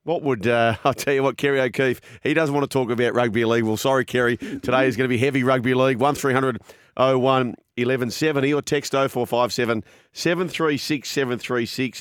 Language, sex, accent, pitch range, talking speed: English, male, Australian, 110-135 Hz, 180 wpm